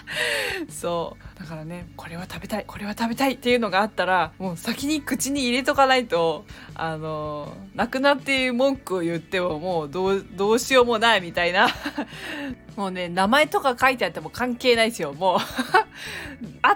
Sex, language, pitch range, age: female, Japanese, 180-255 Hz, 20-39